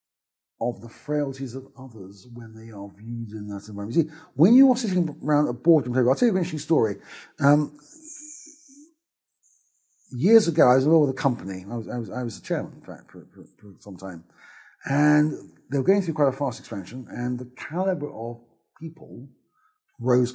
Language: English